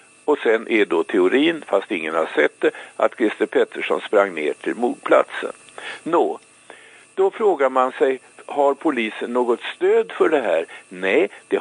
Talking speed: 155 wpm